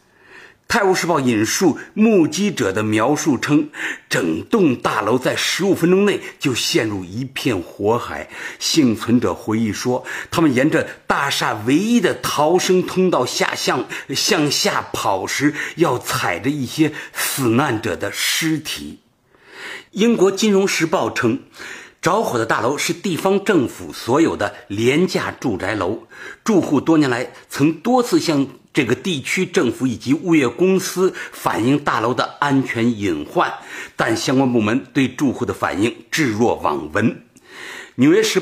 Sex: male